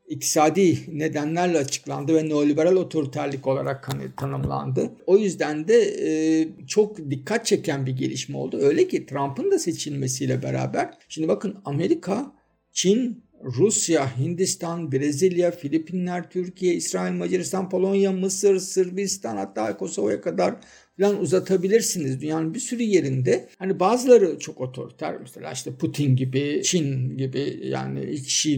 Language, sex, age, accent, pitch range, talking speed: Turkish, male, 50-69, native, 135-185 Hz, 125 wpm